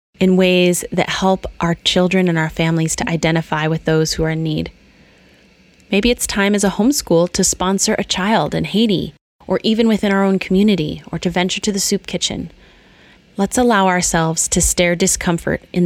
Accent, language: American, English